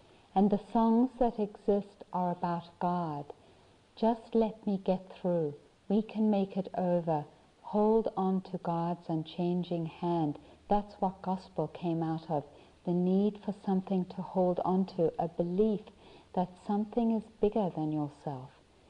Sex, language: female, English